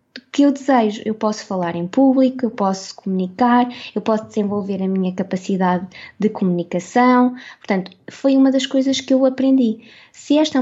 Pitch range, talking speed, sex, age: 205-250 Hz, 175 wpm, female, 20-39